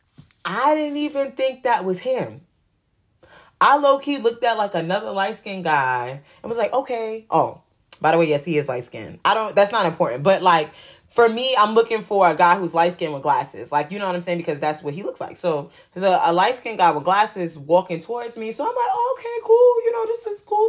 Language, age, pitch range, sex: English, 20-39, 170-270 Hz, female